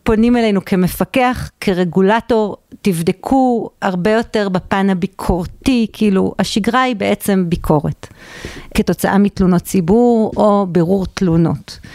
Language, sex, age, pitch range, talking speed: Hebrew, female, 50-69, 185-225 Hz, 100 wpm